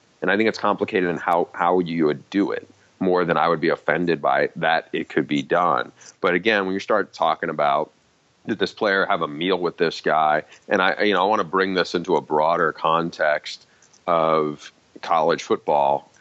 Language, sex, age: English, male, 40-59